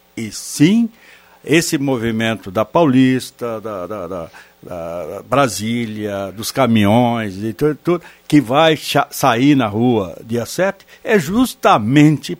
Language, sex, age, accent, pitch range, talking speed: Portuguese, male, 60-79, Brazilian, 125-205 Hz, 95 wpm